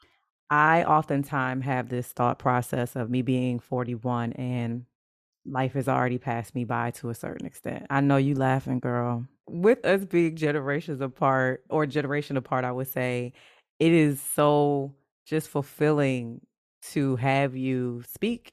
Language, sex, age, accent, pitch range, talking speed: English, female, 30-49, American, 125-145 Hz, 150 wpm